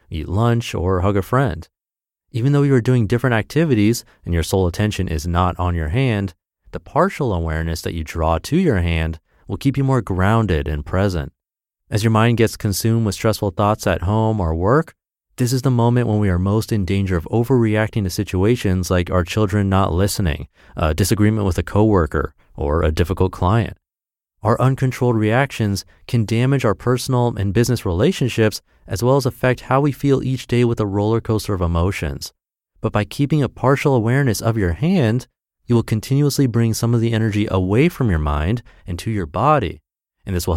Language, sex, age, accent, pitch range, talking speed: English, male, 30-49, American, 90-120 Hz, 195 wpm